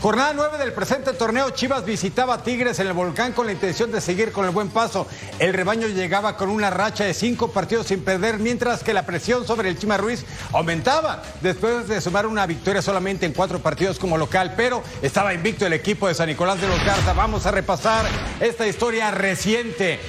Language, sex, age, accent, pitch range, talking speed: Spanish, male, 50-69, Mexican, 190-245 Hz, 205 wpm